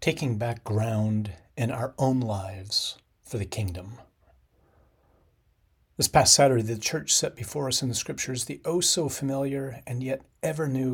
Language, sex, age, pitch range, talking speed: English, male, 40-59, 100-135 Hz, 145 wpm